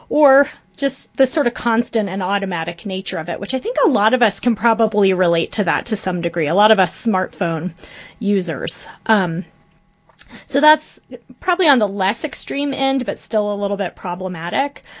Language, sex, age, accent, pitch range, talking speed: English, female, 30-49, American, 185-230 Hz, 190 wpm